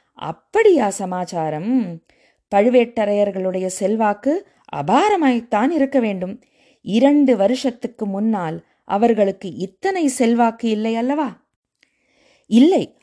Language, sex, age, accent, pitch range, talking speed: Tamil, female, 20-39, native, 185-255 Hz, 75 wpm